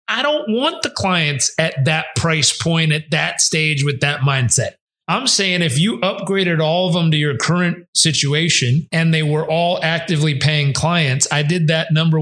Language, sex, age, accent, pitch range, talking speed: English, male, 30-49, American, 140-185 Hz, 185 wpm